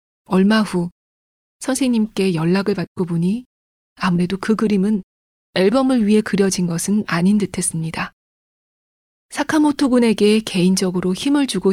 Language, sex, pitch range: Korean, female, 185-240 Hz